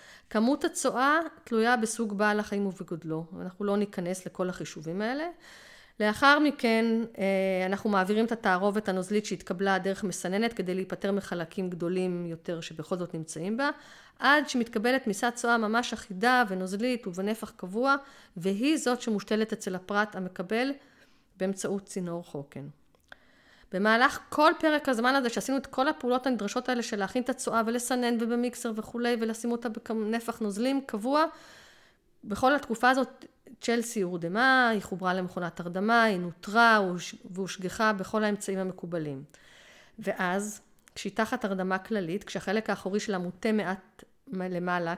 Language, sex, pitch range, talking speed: Hebrew, female, 185-240 Hz, 130 wpm